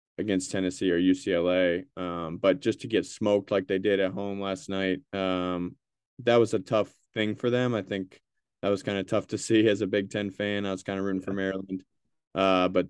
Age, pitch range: 20-39, 90-110 Hz